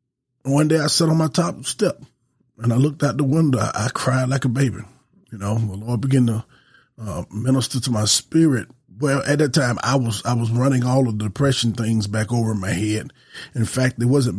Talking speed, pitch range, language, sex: 220 wpm, 120-140 Hz, English, male